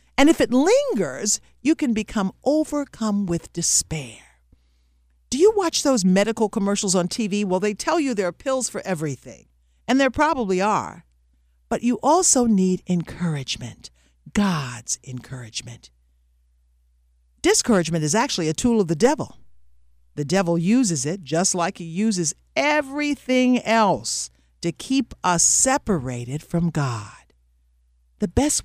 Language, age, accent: English, 50-69, American